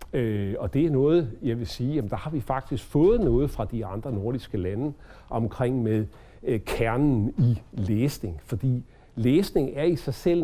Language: English